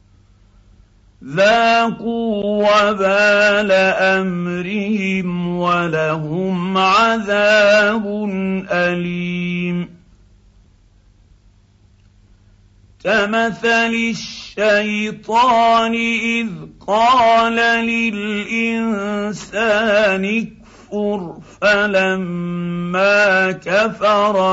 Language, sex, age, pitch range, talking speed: Arabic, male, 50-69, 160-210 Hz, 35 wpm